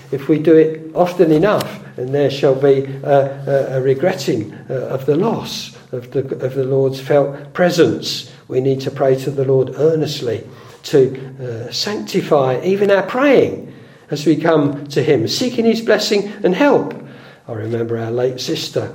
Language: English